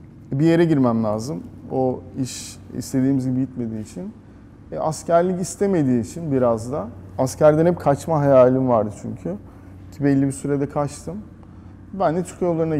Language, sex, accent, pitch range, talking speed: Turkish, male, native, 100-145 Hz, 145 wpm